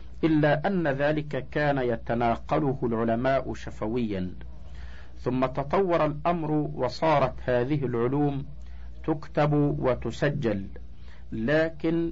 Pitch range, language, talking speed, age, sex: 115-145 Hz, Arabic, 80 wpm, 50-69, male